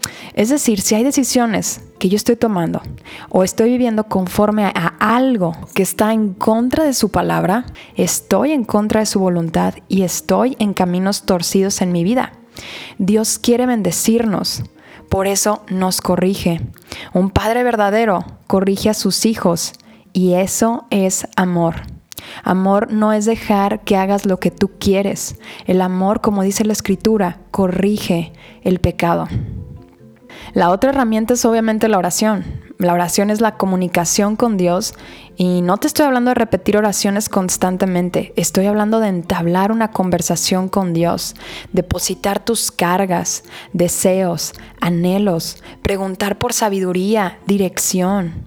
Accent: Mexican